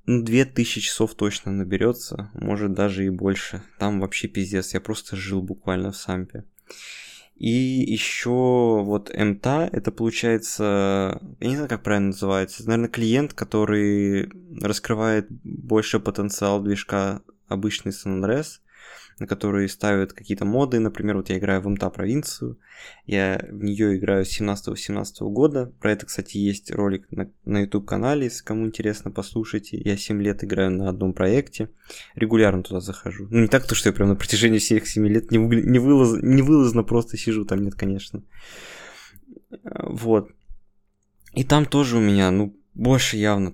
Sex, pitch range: male, 100-120 Hz